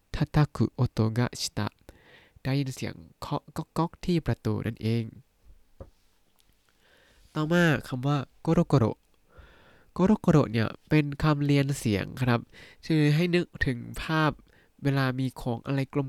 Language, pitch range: Thai, 110-150 Hz